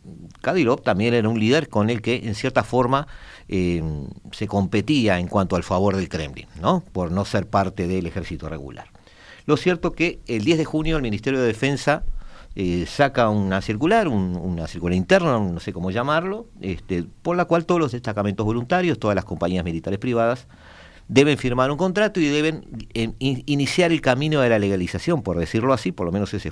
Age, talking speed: 50-69, 190 wpm